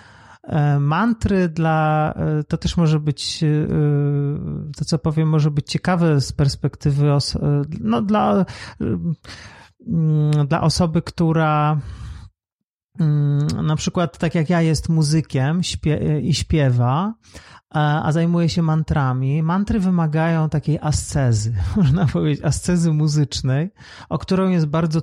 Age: 40-59